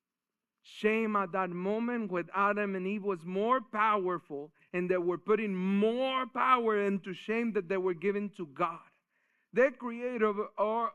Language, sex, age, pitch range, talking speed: English, male, 40-59, 185-245 Hz, 150 wpm